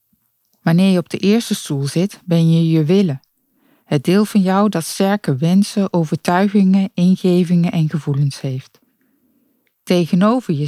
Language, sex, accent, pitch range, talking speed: Dutch, female, Dutch, 160-220 Hz, 140 wpm